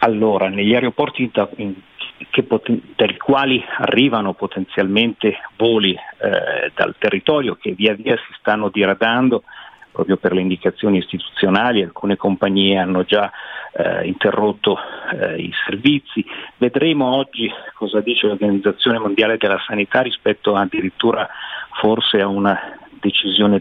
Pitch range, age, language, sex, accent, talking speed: 100-120 Hz, 50-69, Italian, male, native, 115 wpm